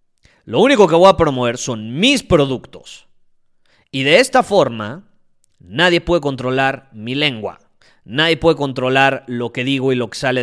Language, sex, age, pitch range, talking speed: Spanish, male, 30-49, 110-150 Hz, 160 wpm